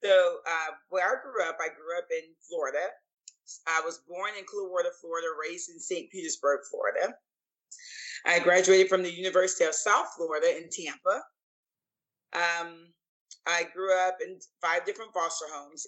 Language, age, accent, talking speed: English, 30-49, American, 160 wpm